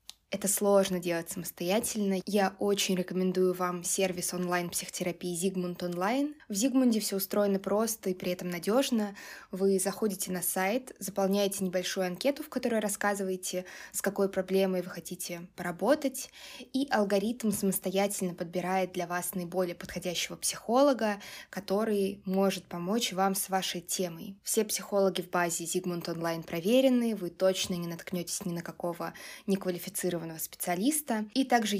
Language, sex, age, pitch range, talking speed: Russian, female, 20-39, 180-210 Hz, 135 wpm